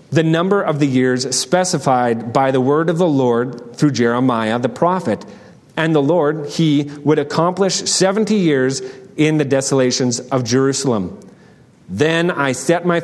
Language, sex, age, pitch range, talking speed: English, male, 30-49, 135-200 Hz, 150 wpm